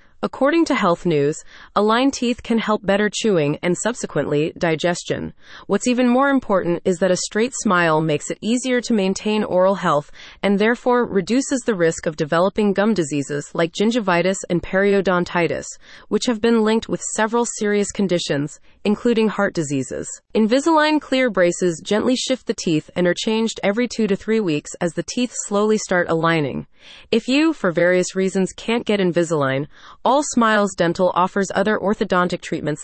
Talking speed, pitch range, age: 165 wpm, 170-230 Hz, 30-49